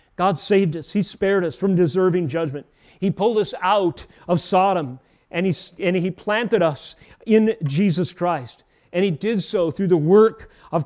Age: 40-59